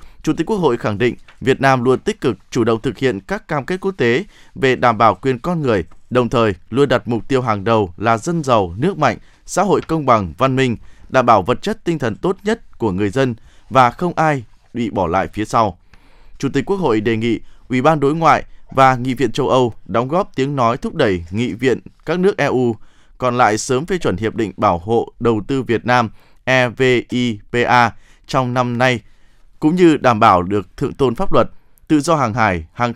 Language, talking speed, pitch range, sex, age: Vietnamese, 220 wpm, 110-140 Hz, male, 20-39